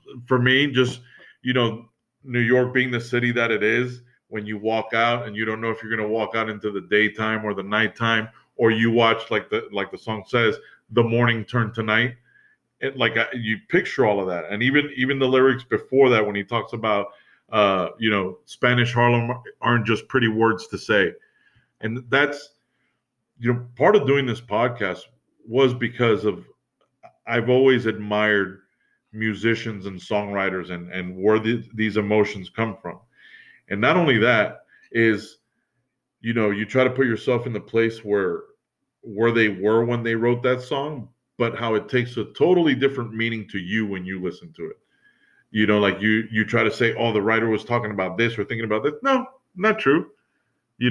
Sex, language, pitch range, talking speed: male, English, 110-125 Hz, 195 wpm